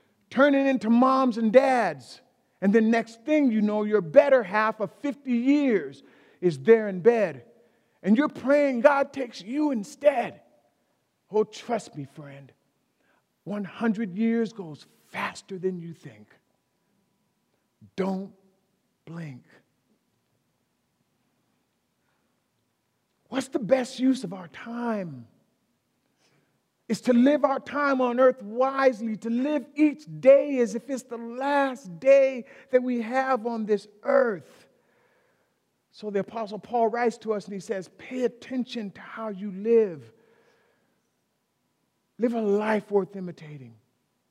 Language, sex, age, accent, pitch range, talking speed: English, male, 50-69, American, 195-260 Hz, 125 wpm